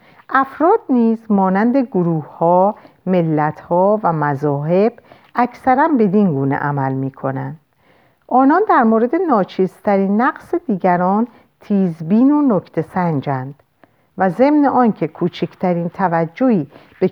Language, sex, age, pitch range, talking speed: Persian, female, 50-69, 170-245 Hz, 105 wpm